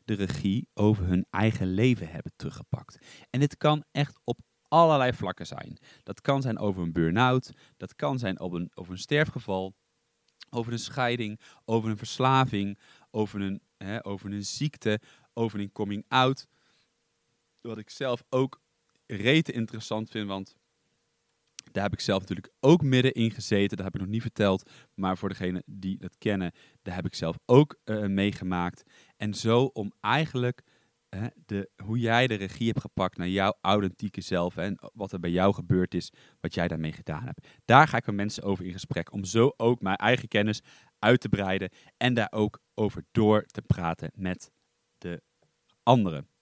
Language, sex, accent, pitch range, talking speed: Dutch, male, Dutch, 95-125 Hz, 175 wpm